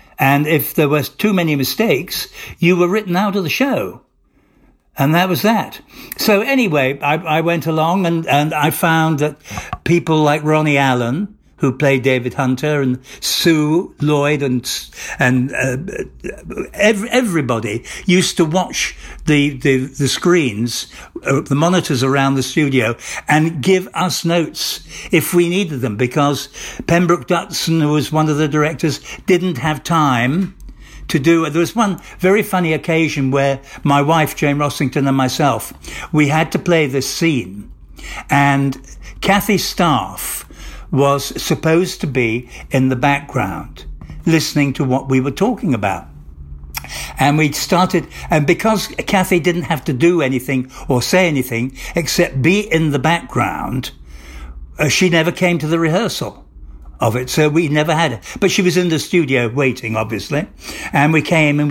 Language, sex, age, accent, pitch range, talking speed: English, male, 60-79, British, 130-170 Hz, 155 wpm